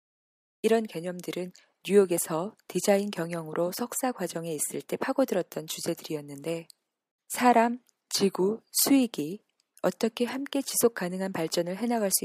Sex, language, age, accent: female, Korean, 20-39, native